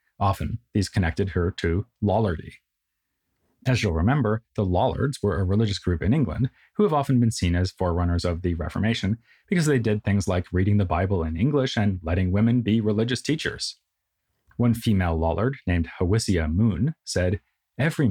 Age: 30-49